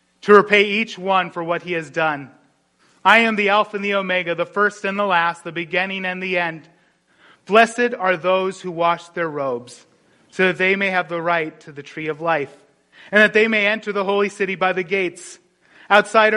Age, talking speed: 30-49, 210 wpm